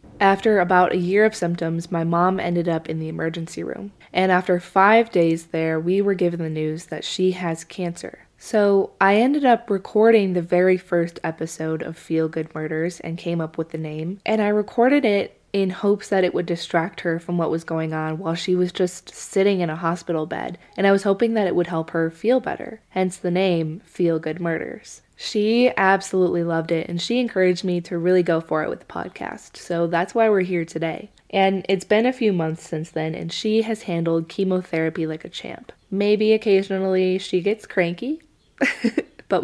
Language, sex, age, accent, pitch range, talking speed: English, female, 20-39, American, 165-195 Hz, 200 wpm